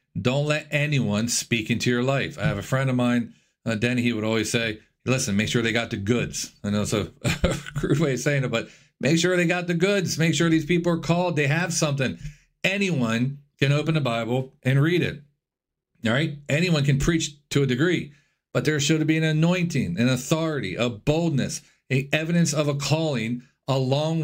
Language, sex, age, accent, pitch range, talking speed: English, male, 40-59, American, 120-155 Hz, 205 wpm